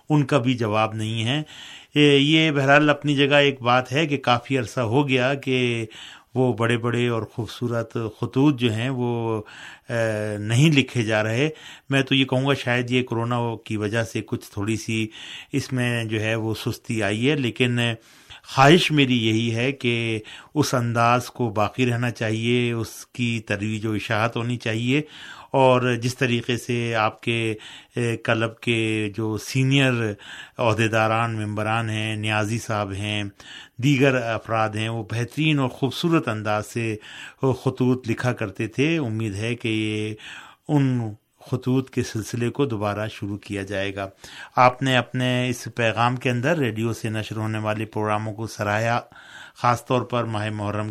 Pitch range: 110-130 Hz